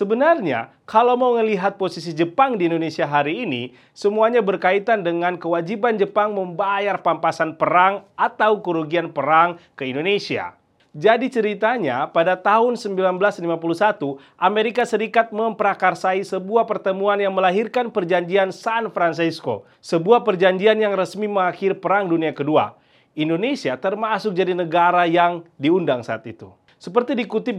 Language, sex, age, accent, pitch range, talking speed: Indonesian, male, 30-49, native, 175-225 Hz, 120 wpm